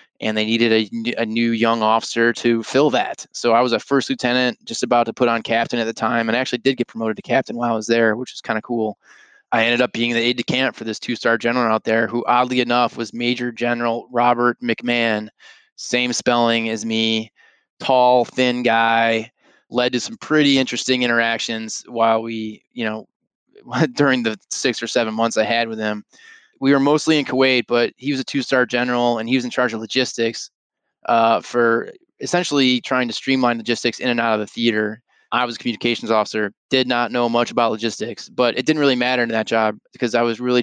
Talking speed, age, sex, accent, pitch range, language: 215 wpm, 20-39, male, American, 115-125 Hz, English